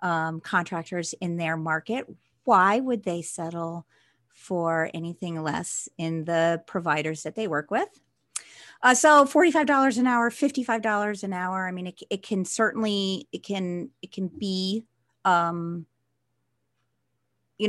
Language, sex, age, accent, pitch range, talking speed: English, female, 40-59, American, 165-210 Hz, 130 wpm